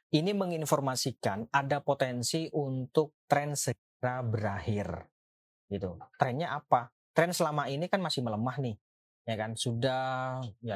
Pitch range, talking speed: 110-140 Hz, 125 wpm